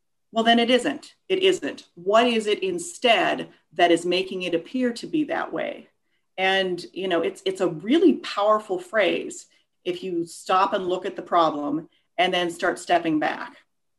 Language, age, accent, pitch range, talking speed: English, 40-59, American, 175-265 Hz, 175 wpm